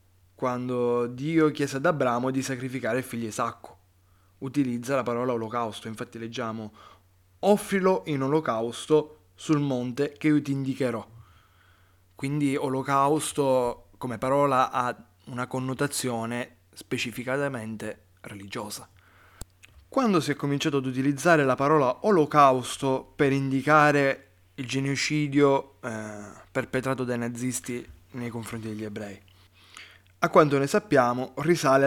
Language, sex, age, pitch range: Italian, male, 20-39, 110-145 Hz